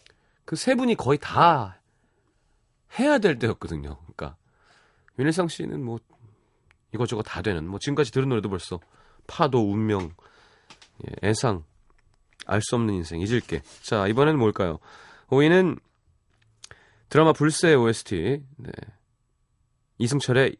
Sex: male